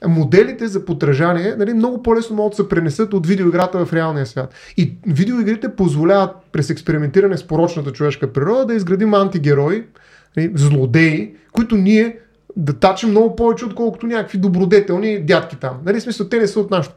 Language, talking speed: Bulgarian, 165 wpm